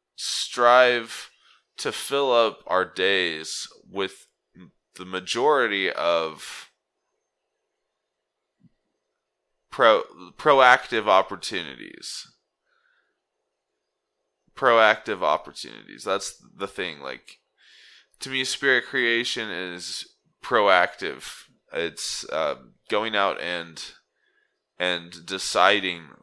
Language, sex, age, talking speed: English, male, 20-39, 75 wpm